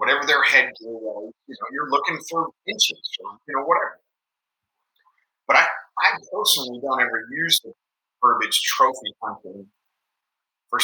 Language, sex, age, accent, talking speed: English, male, 30-49, American, 150 wpm